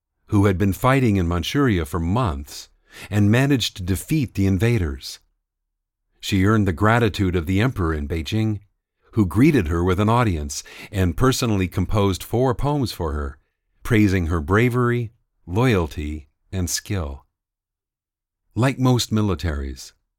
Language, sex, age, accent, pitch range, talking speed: English, male, 50-69, American, 85-110 Hz, 135 wpm